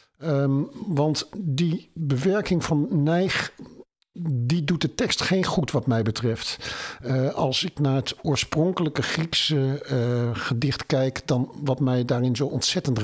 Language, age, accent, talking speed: Dutch, 50-69, Dutch, 130 wpm